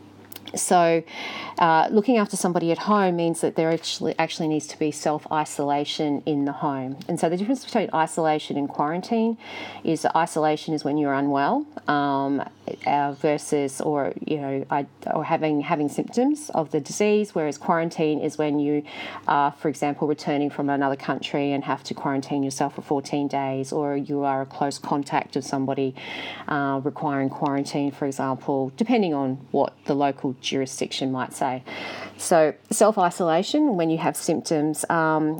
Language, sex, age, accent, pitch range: Japanese, female, 40-59, Australian, 145-170 Hz